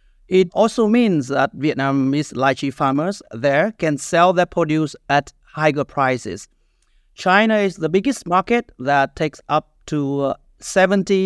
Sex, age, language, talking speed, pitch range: male, 30-49, English, 135 wpm, 135-180 Hz